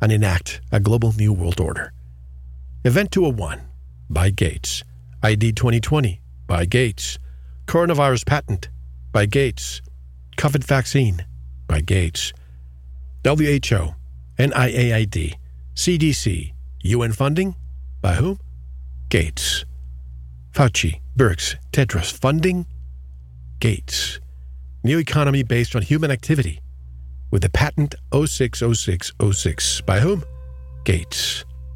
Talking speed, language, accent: 100 wpm, English, American